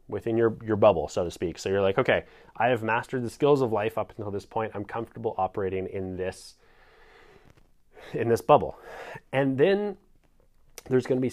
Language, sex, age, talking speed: English, male, 30-49, 185 wpm